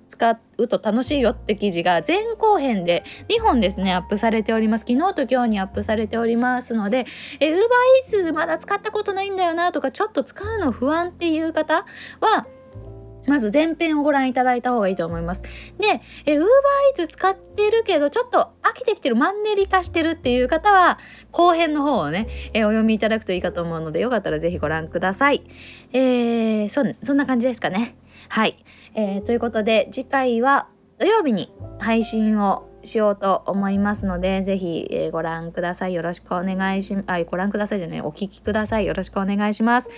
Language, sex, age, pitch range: Japanese, female, 20-39, 200-315 Hz